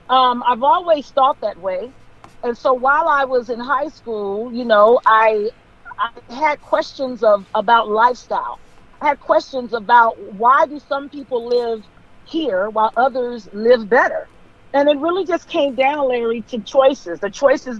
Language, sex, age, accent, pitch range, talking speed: English, female, 40-59, American, 210-265 Hz, 160 wpm